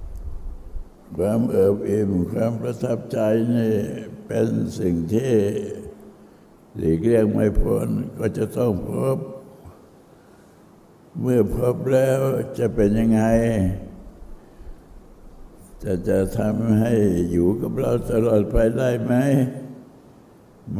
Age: 60-79